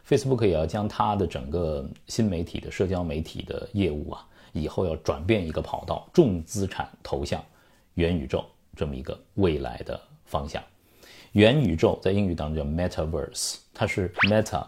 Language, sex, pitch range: Chinese, male, 80-115 Hz